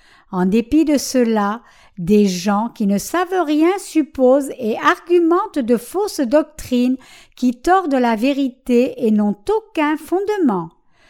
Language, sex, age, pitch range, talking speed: French, female, 60-79, 225-325 Hz, 130 wpm